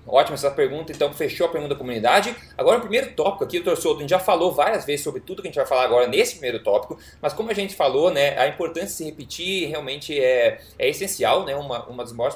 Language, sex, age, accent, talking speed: Portuguese, male, 20-39, Brazilian, 260 wpm